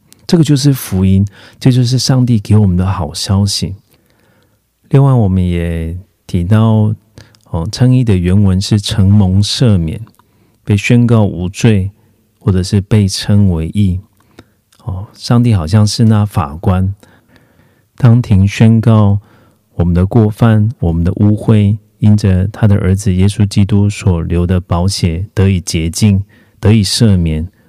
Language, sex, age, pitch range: Korean, male, 40-59, 95-110 Hz